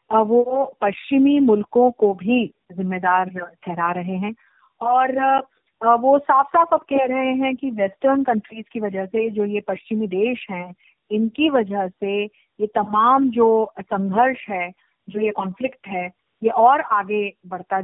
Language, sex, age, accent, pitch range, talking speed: Hindi, female, 30-49, native, 205-260 Hz, 150 wpm